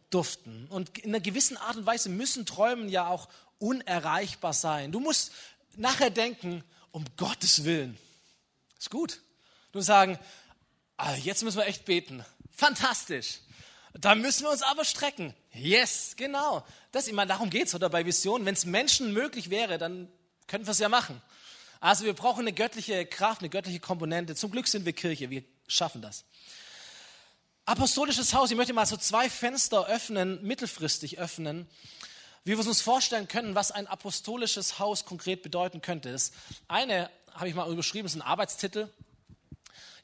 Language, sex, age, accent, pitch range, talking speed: German, male, 20-39, German, 170-230 Hz, 165 wpm